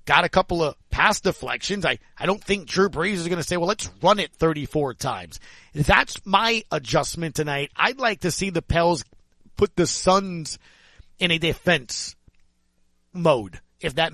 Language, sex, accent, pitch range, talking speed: English, male, American, 130-195 Hz, 175 wpm